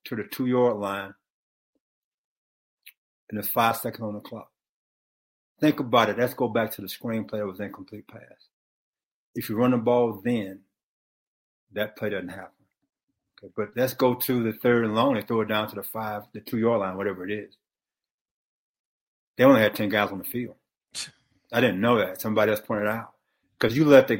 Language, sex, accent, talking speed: English, male, American, 195 wpm